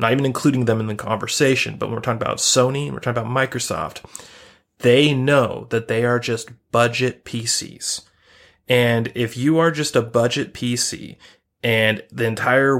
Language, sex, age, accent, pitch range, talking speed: English, male, 30-49, American, 115-130 Hz, 175 wpm